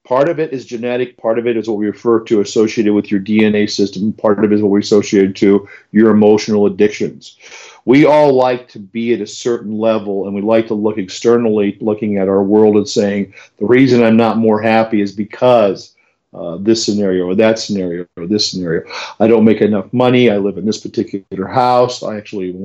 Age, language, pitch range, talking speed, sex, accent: 50-69, English, 100-115 Hz, 210 wpm, male, American